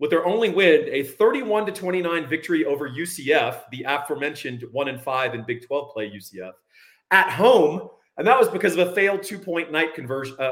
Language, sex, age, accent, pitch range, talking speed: English, male, 30-49, American, 130-195 Hz, 195 wpm